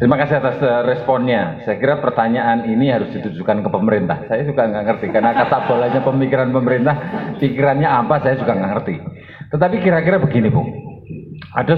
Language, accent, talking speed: Indonesian, native, 165 wpm